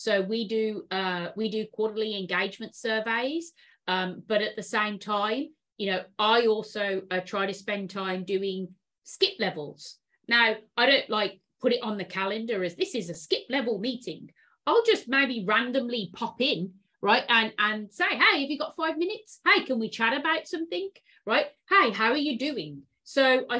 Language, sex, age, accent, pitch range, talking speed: English, female, 30-49, British, 195-250 Hz, 185 wpm